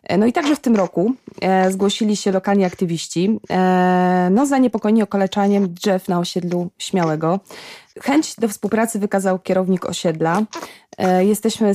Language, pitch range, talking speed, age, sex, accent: Polish, 185-220 Hz, 125 wpm, 20-39, female, native